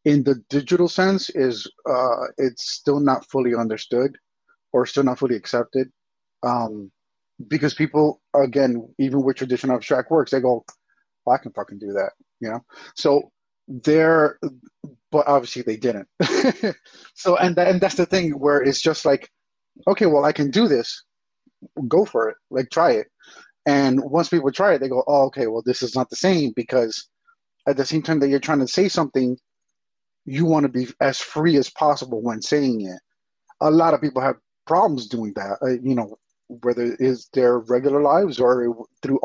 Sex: male